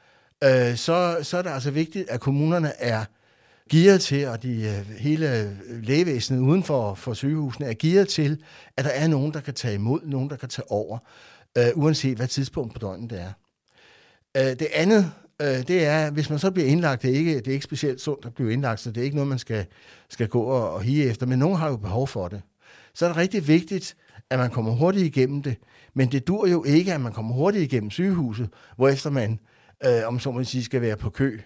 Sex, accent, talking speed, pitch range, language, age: male, native, 220 wpm, 120-155 Hz, Danish, 60-79